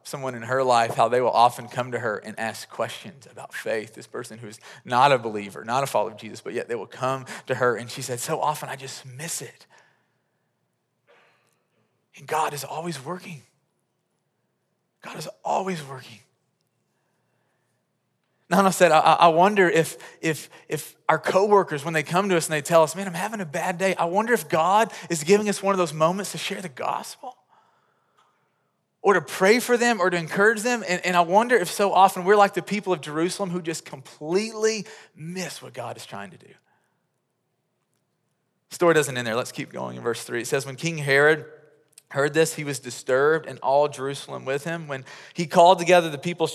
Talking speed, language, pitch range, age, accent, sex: 200 wpm, English, 135-180 Hz, 30-49, American, male